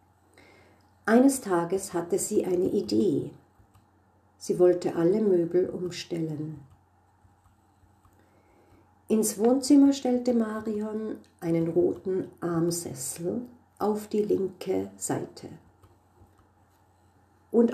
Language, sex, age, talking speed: German, female, 50-69, 80 wpm